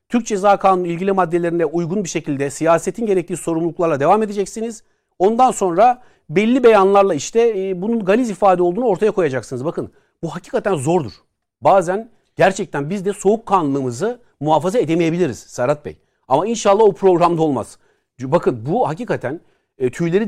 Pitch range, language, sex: 160-205 Hz, Turkish, male